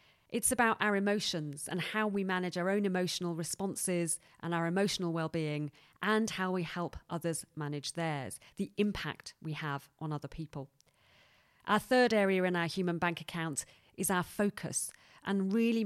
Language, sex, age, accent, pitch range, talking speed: English, female, 40-59, British, 160-195 Hz, 165 wpm